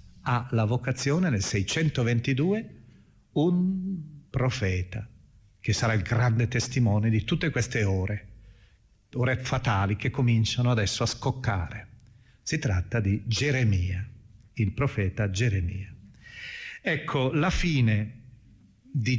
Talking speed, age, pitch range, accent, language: 105 wpm, 40-59, 105-140 Hz, native, Italian